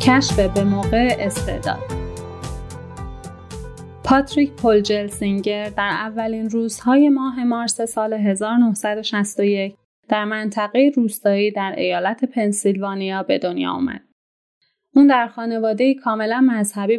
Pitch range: 200-235 Hz